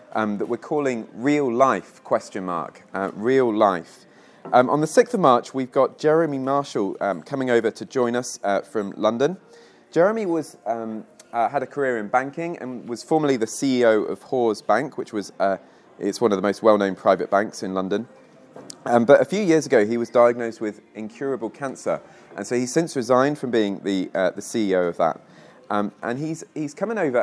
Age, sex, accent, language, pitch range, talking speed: 30-49, male, British, English, 105-140 Hz, 200 wpm